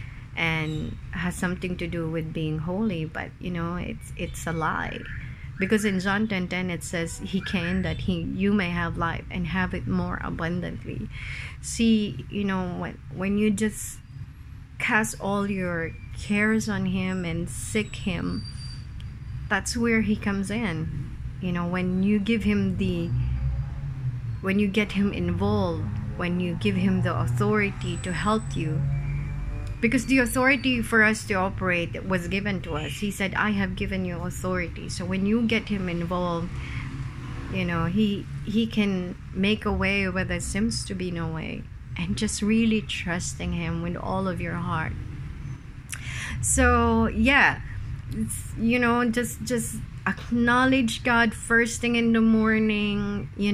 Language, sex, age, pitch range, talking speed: English, female, 30-49, 140-210 Hz, 155 wpm